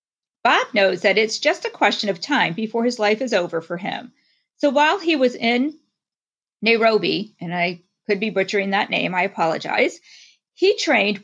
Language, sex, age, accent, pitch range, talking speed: English, female, 40-59, American, 195-265 Hz, 175 wpm